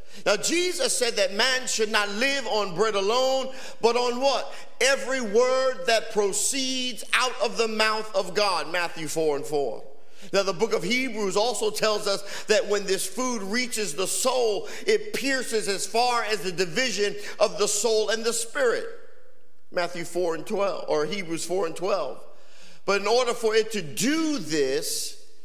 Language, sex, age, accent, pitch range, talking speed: English, male, 50-69, American, 195-275 Hz, 170 wpm